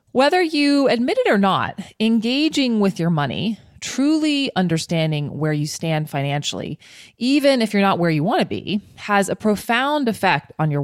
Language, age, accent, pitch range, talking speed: English, 20-39, American, 150-210 Hz, 170 wpm